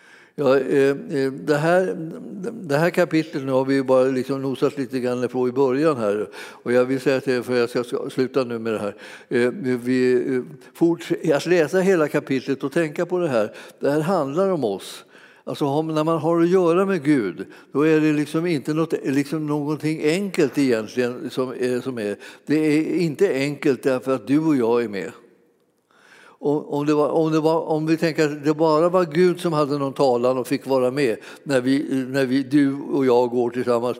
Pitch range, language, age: 135-170 Hz, Swedish, 60-79